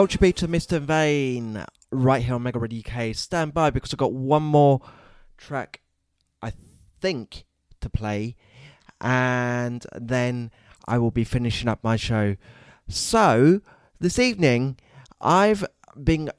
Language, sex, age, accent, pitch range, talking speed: English, male, 20-39, British, 90-140 Hz, 130 wpm